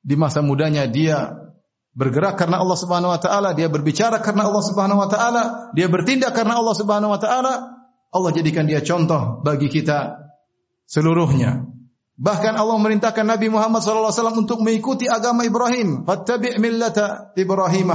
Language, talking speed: Indonesian, 145 wpm